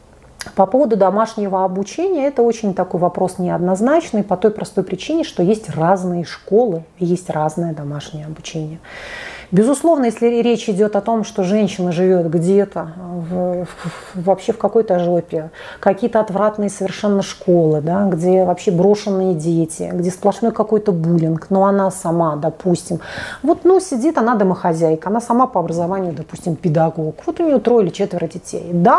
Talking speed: 155 wpm